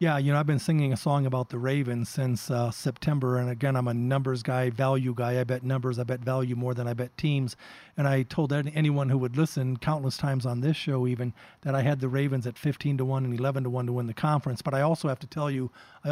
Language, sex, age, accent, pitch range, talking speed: English, male, 40-59, American, 130-155 Hz, 265 wpm